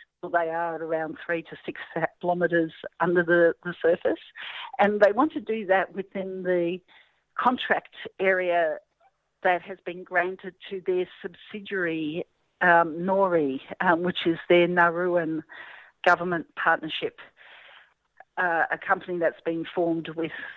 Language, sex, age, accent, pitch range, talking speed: English, female, 50-69, Australian, 170-200 Hz, 130 wpm